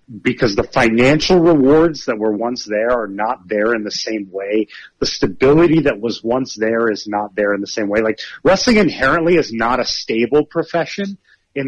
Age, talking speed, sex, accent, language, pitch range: 30-49, 190 wpm, male, American, English, 105-135 Hz